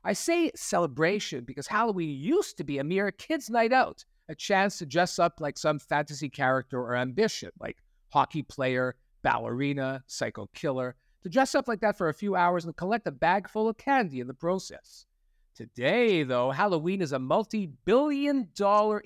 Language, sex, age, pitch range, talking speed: English, male, 50-69, 145-215 Hz, 175 wpm